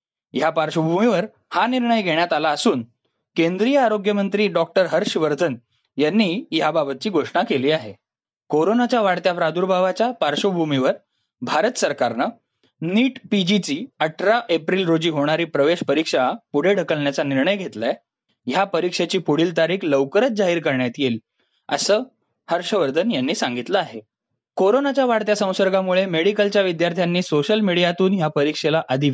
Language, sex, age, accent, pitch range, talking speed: Marathi, male, 20-39, native, 155-220 Hz, 120 wpm